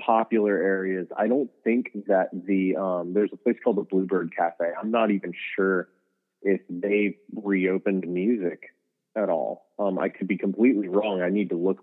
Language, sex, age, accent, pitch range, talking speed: English, male, 20-39, American, 90-110 Hz, 180 wpm